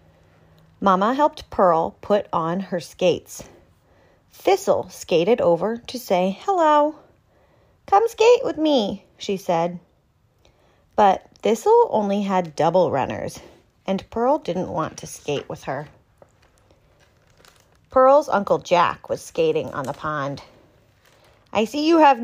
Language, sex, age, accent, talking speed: English, female, 30-49, American, 120 wpm